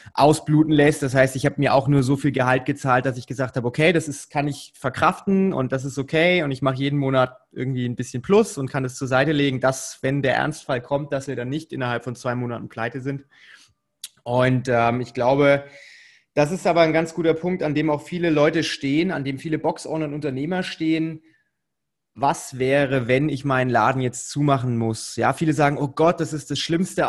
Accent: German